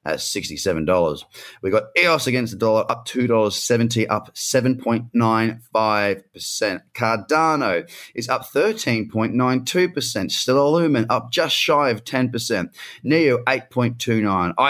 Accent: Australian